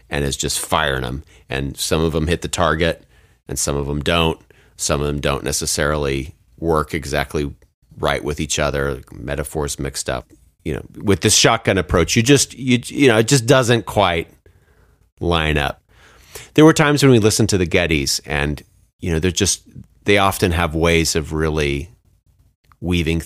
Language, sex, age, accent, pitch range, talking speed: English, male, 30-49, American, 75-100 Hz, 180 wpm